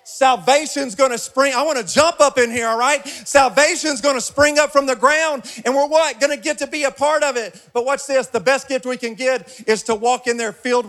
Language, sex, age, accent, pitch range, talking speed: English, male, 40-59, American, 220-260 Hz, 240 wpm